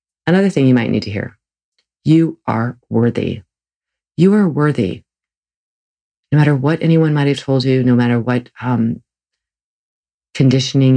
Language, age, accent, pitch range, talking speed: English, 40-59, American, 115-140 Hz, 140 wpm